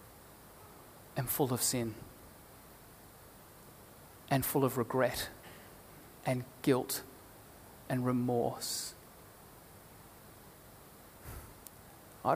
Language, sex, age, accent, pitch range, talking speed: English, male, 30-49, Australian, 120-165 Hz, 65 wpm